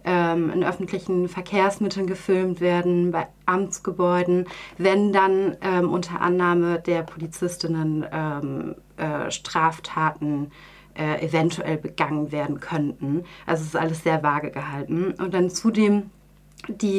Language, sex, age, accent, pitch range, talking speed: German, female, 30-49, German, 175-205 Hz, 115 wpm